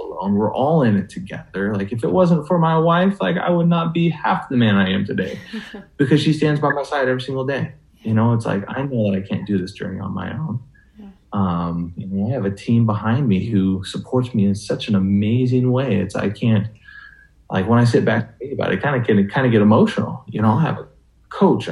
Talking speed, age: 245 wpm, 20-39